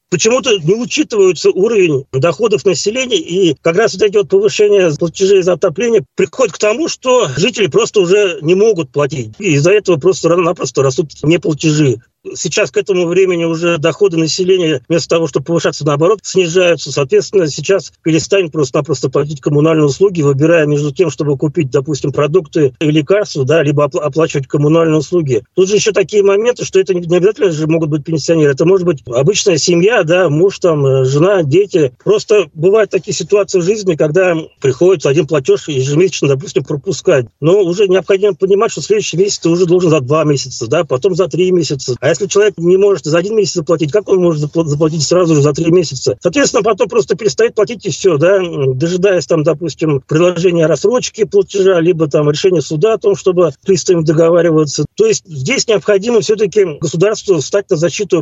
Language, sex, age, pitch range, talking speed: Russian, male, 40-59, 155-200 Hz, 175 wpm